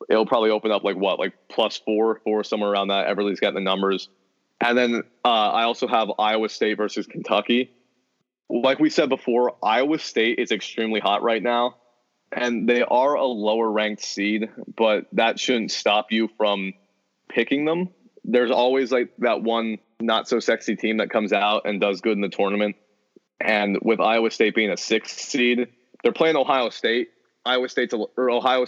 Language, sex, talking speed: English, male, 185 wpm